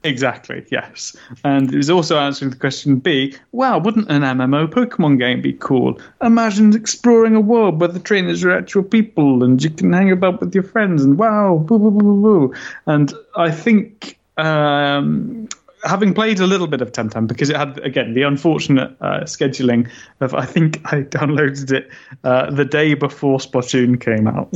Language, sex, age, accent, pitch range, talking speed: English, male, 30-49, British, 130-170 Hz, 180 wpm